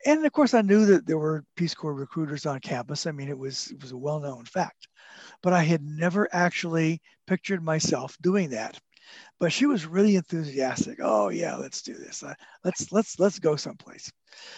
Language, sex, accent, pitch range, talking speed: English, male, American, 150-195 Hz, 190 wpm